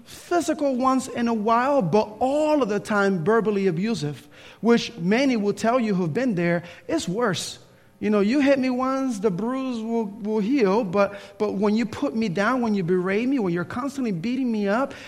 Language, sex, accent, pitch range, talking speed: English, male, American, 205-280 Hz, 200 wpm